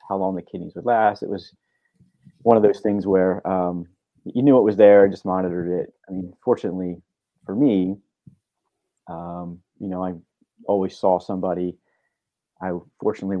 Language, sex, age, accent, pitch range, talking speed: English, male, 30-49, American, 90-105 Hz, 160 wpm